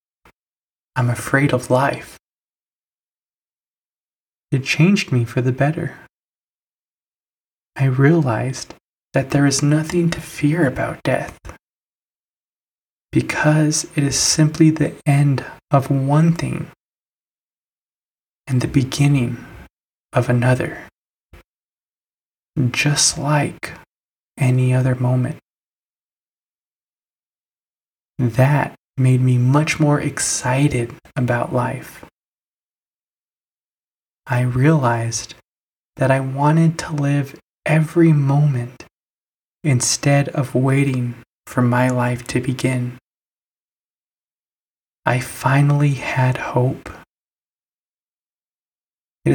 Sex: male